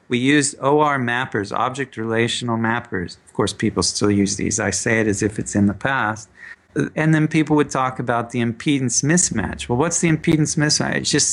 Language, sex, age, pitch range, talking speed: English, male, 40-59, 115-155 Hz, 200 wpm